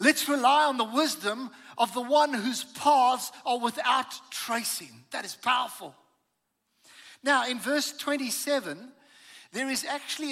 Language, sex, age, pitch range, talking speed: English, male, 60-79, 220-285 Hz, 135 wpm